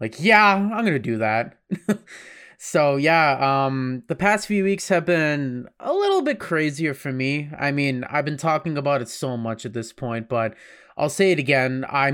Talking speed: 200 wpm